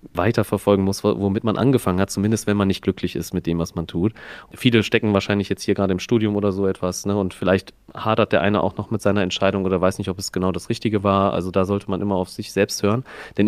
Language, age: German, 30-49